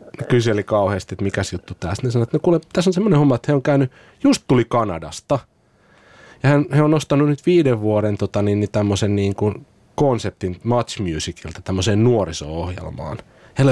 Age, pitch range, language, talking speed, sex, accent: 30-49, 95-120 Hz, Finnish, 170 wpm, male, native